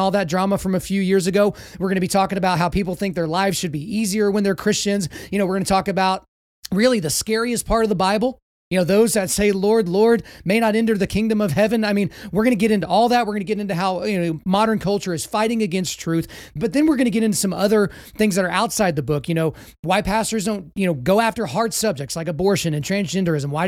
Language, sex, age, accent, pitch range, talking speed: English, male, 30-49, American, 180-215 Hz, 270 wpm